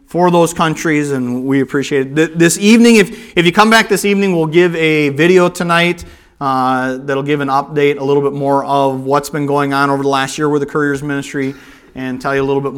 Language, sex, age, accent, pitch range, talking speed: English, male, 40-59, American, 155-210 Hz, 230 wpm